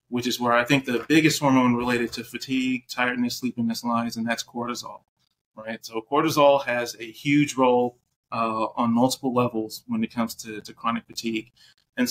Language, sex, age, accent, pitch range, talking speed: English, male, 30-49, American, 120-135 Hz, 180 wpm